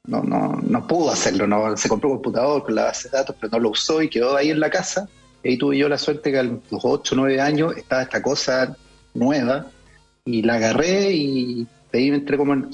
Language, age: Spanish, 30-49